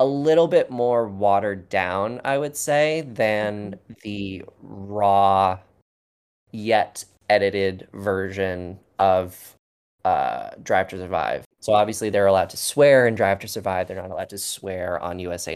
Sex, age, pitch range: male, 20-39, 95-110 Hz